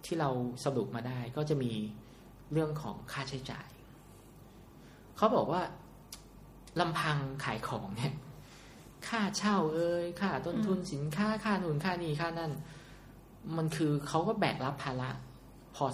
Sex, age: male, 20-39